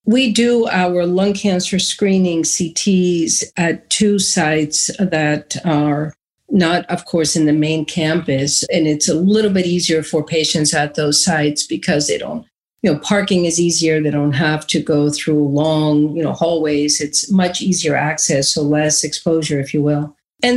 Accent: American